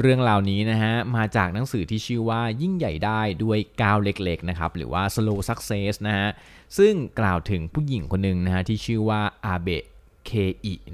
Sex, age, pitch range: male, 20-39, 90-115 Hz